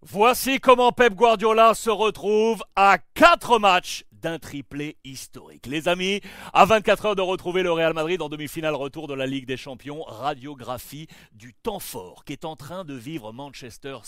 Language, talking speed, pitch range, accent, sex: French, 175 wpm, 145-200 Hz, French, male